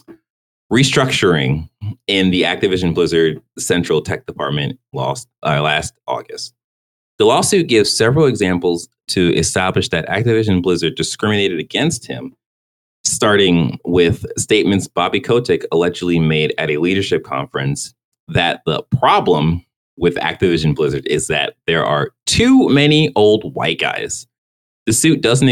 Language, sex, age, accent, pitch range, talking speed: English, male, 30-49, American, 85-120 Hz, 120 wpm